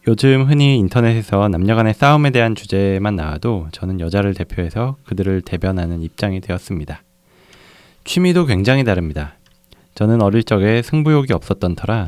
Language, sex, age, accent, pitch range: Korean, male, 20-39, native, 90-125 Hz